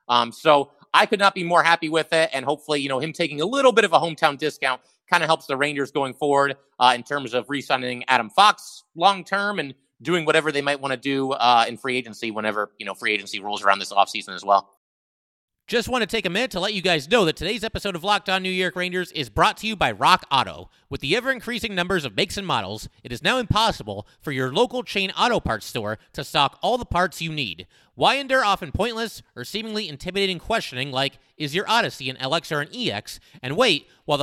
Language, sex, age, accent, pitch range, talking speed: English, male, 30-49, American, 130-195 Hz, 235 wpm